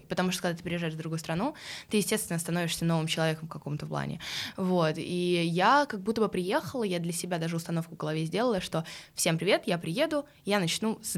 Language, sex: Russian, female